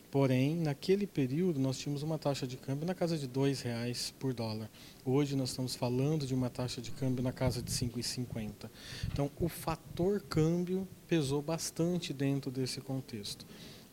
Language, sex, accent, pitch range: Portuguese, male, Brazilian, 130-160 Hz